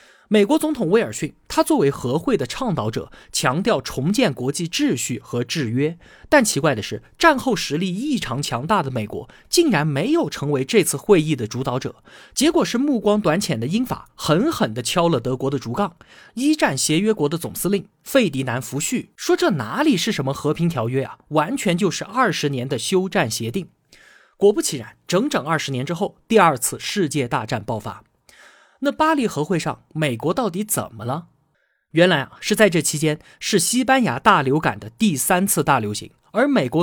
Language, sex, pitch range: Chinese, male, 135-215 Hz